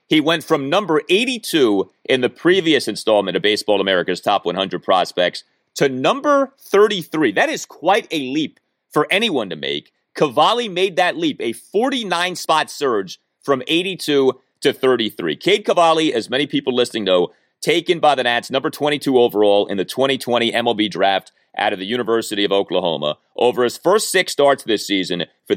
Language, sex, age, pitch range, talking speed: English, male, 30-49, 120-180 Hz, 165 wpm